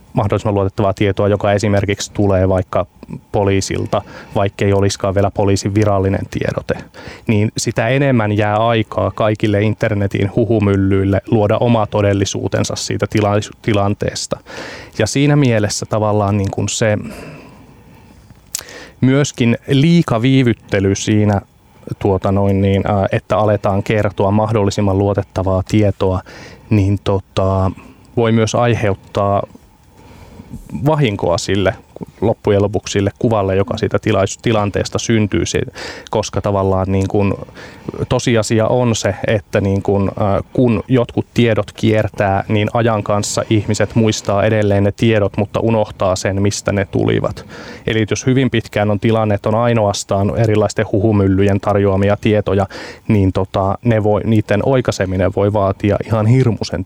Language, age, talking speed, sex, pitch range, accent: Finnish, 20-39, 120 wpm, male, 100-110 Hz, native